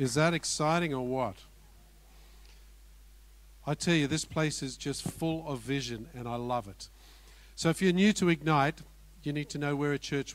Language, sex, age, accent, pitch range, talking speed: English, male, 50-69, Australian, 145-190 Hz, 185 wpm